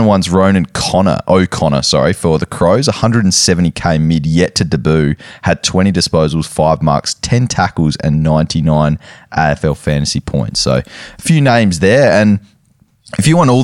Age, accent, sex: 20-39, Australian, male